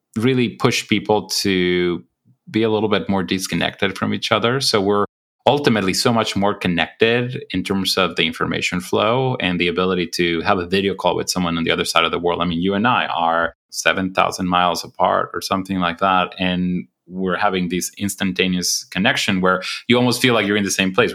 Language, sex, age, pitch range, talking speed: English, male, 30-49, 90-115 Hz, 205 wpm